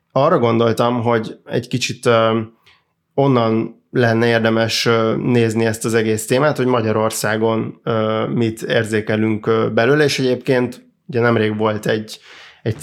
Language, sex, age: Hungarian, male, 20-39